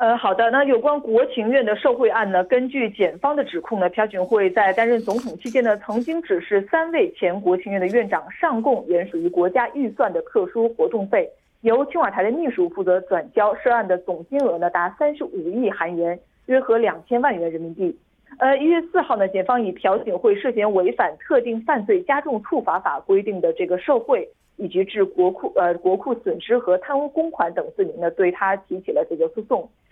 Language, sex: Korean, female